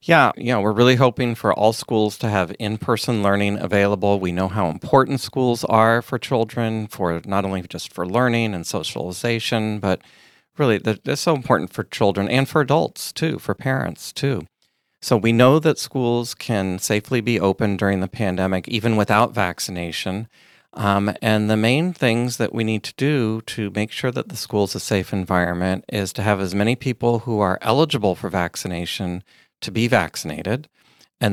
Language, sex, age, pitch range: English, male, 40-59, 100-120 Hz